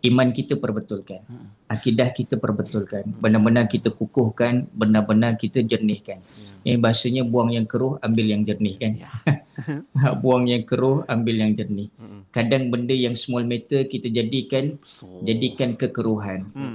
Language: English